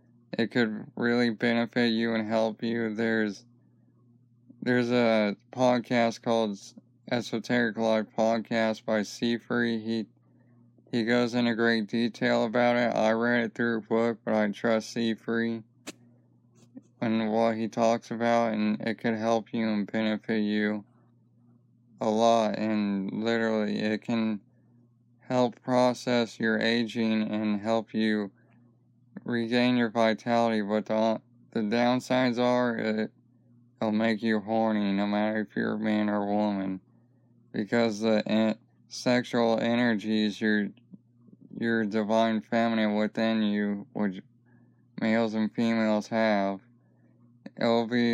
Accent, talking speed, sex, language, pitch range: American, 130 wpm, male, English, 110-120 Hz